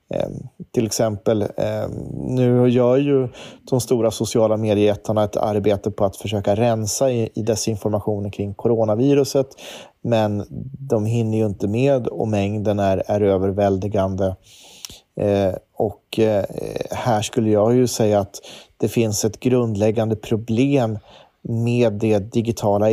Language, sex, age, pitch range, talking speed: Swedish, male, 30-49, 105-120 Hz, 120 wpm